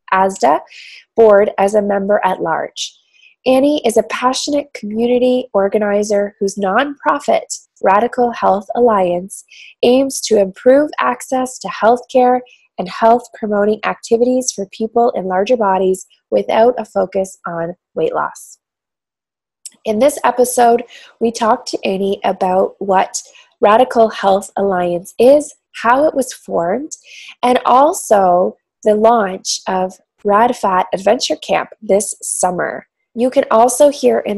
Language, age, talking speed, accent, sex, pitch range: English, 20-39, 125 wpm, American, female, 195-255 Hz